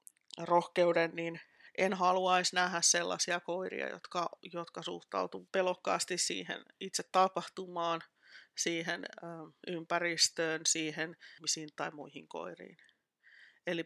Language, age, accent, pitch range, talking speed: Finnish, 30-49, native, 155-170 Hz, 100 wpm